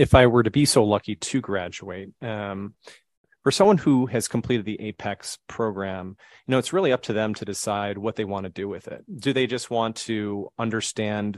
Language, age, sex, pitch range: English, 30-49, male, 105-120 Hz